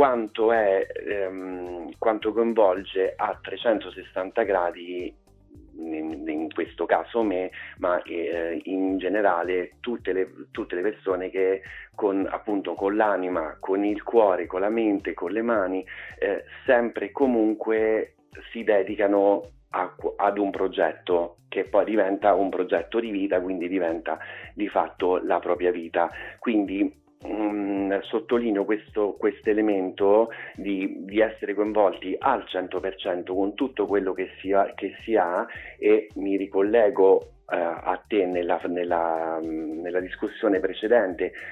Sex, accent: male, native